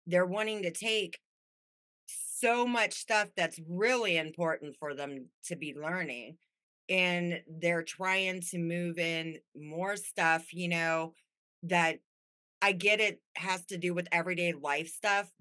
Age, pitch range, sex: 30-49, 160-205 Hz, female